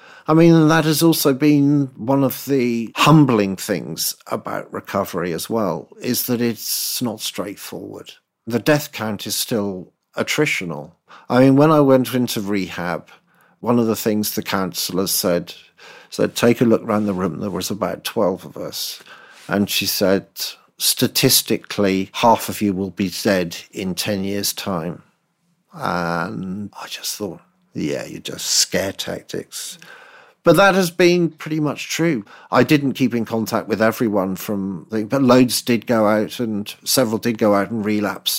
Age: 50-69